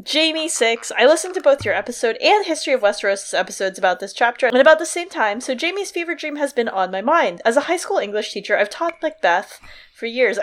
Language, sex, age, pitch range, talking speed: English, female, 20-39, 195-285 Hz, 235 wpm